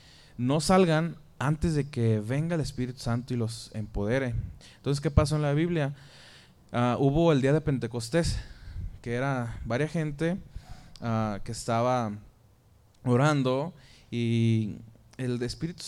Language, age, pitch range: Spanish, 20-39, 115-140 Hz